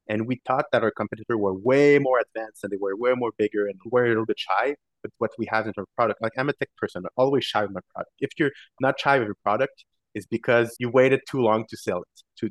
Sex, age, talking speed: male, 30-49, 275 wpm